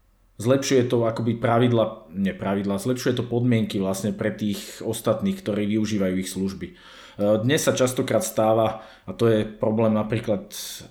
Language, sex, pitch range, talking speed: Slovak, male, 110-125 Hz, 145 wpm